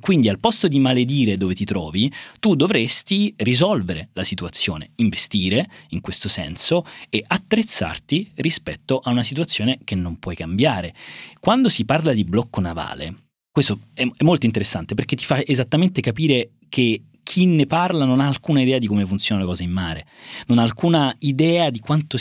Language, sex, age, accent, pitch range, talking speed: Italian, male, 30-49, native, 95-140 Hz, 170 wpm